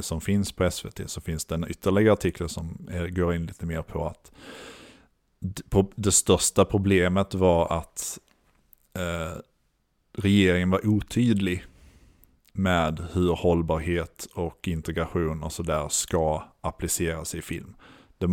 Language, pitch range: Swedish, 85-95 Hz